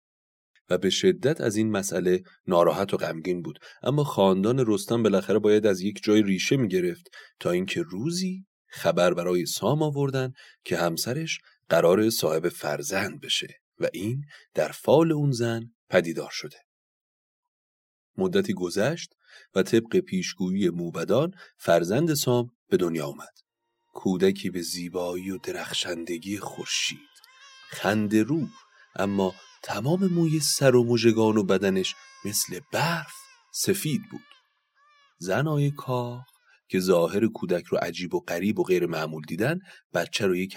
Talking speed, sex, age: 130 wpm, male, 30-49